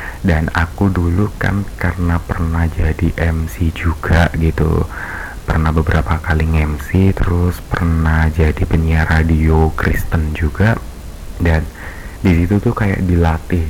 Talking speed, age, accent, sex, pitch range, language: 125 wpm, 30-49, native, male, 80-95 Hz, Indonesian